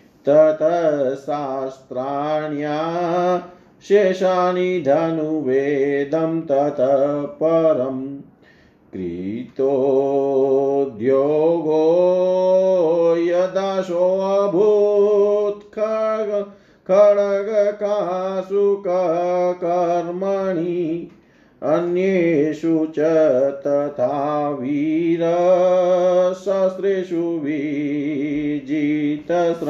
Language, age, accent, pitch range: Hindi, 40-59, native, 145-180 Hz